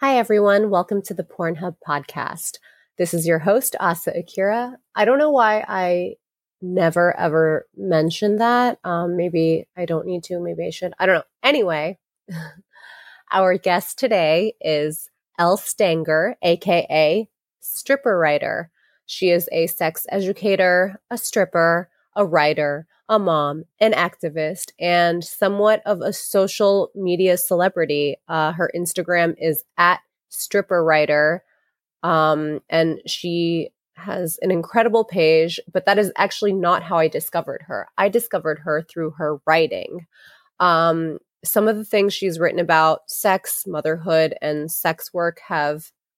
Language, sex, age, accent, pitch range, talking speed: English, female, 20-39, American, 160-195 Hz, 135 wpm